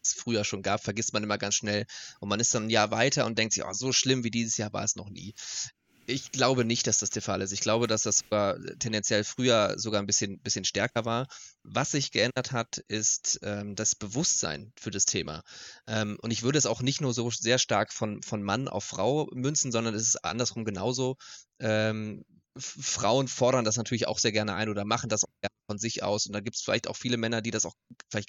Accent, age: German, 20-39